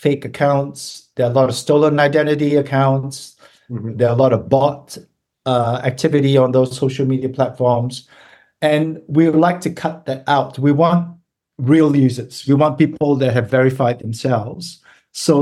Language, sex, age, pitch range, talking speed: English, male, 50-69, 120-150 Hz, 165 wpm